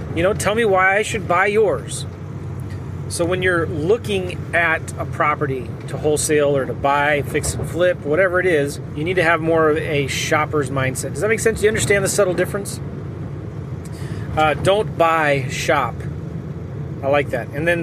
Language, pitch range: English, 135-170 Hz